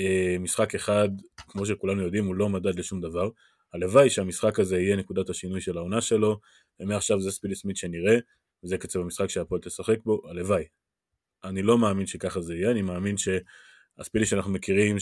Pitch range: 90-110 Hz